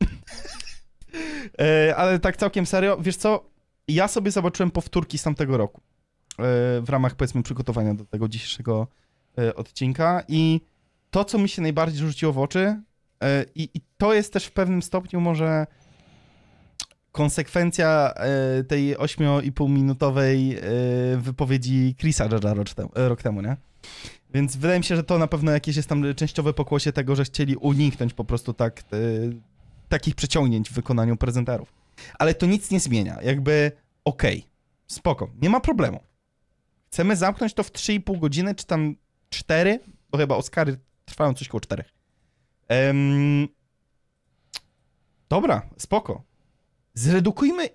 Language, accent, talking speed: Polish, native, 130 wpm